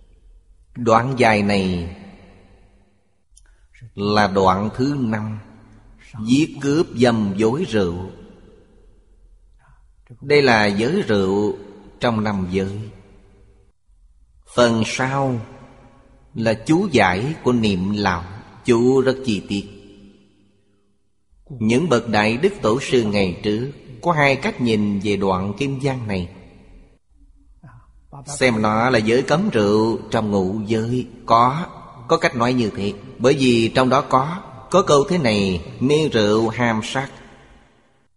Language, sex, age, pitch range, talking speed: Vietnamese, male, 30-49, 100-130 Hz, 120 wpm